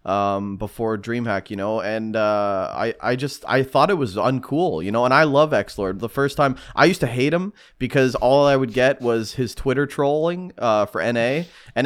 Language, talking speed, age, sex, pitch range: English, 220 wpm, 20-39, male, 105-135 Hz